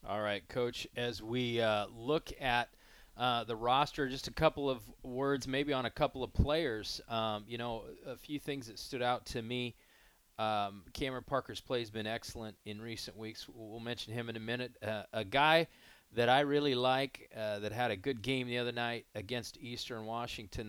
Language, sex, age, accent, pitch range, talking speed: English, male, 40-59, American, 110-130 Hz, 195 wpm